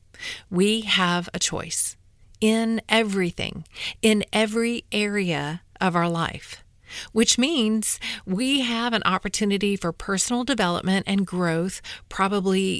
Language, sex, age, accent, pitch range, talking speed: English, female, 40-59, American, 175-225 Hz, 115 wpm